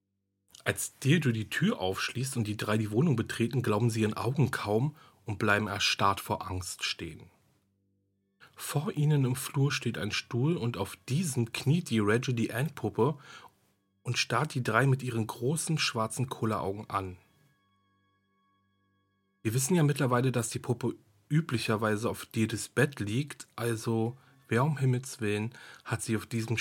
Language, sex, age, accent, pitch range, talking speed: German, male, 40-59, German, 100-130 Hz, 155 wpm